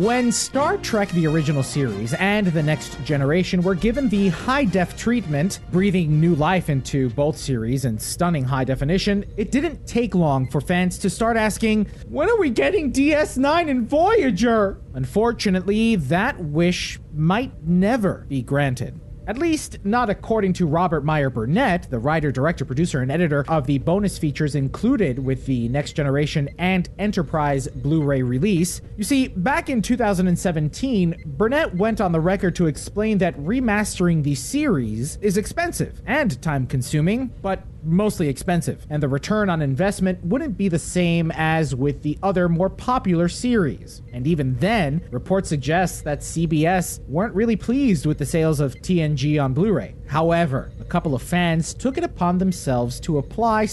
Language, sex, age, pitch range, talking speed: English, male, 30-49, 145-205 Hz, 155 wpm